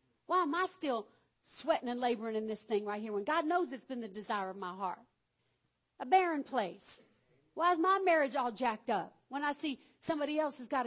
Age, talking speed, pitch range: 50-69, 215 wpm, 245-350 Hz